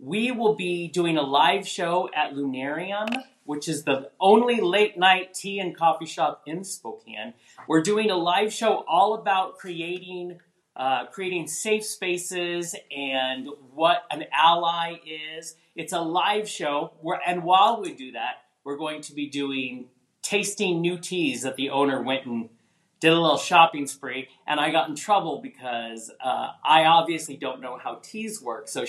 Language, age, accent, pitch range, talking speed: English, 40-59, American, 145-200 Hz, 170 wpm